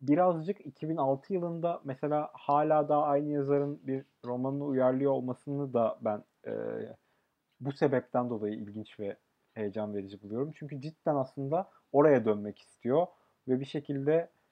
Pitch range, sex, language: 115-145 Hz, male, Turkish